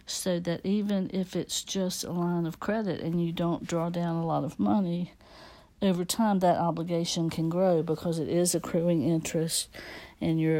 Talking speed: 180 wpm